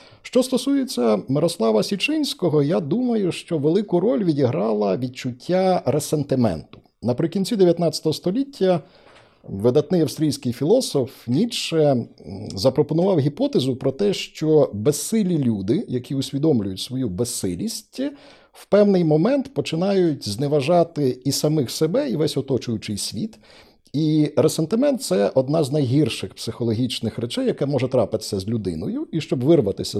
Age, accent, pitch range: 50-69, native, 120-175 Hz